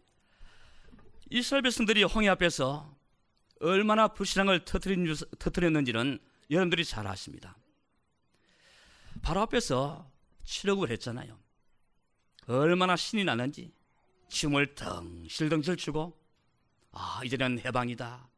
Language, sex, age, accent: Korean, male, 40-59, native